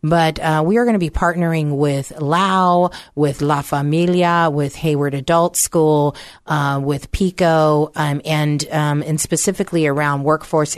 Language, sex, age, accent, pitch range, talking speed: English, female, 40-59, American, 145-175 Hz, 150 wpm